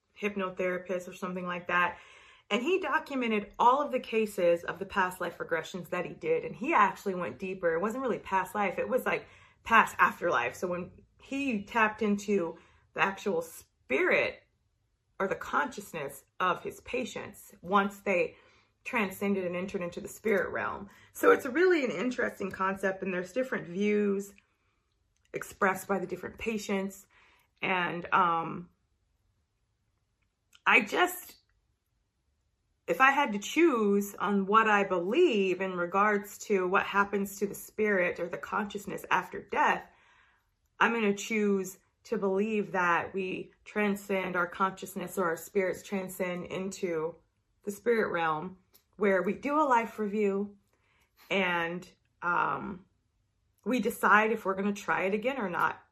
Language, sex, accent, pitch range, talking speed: English, female, American, 180-215 Hz, 145 wpm